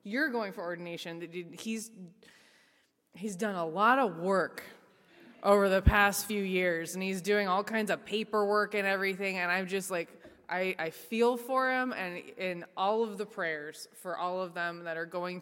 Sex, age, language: female, 20-39, English